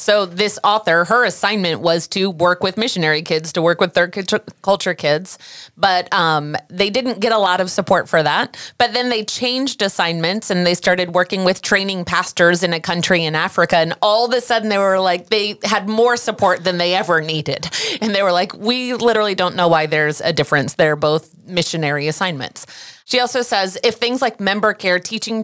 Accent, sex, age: American, female, 30-49